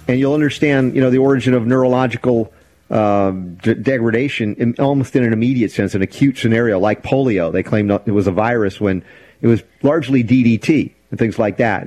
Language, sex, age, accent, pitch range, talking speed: English, male, 50-69, American, 105-135 Hz, 190 wpm